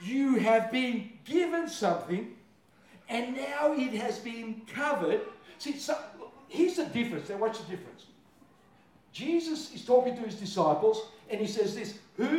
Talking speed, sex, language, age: 155 wpm, male, English, 60-79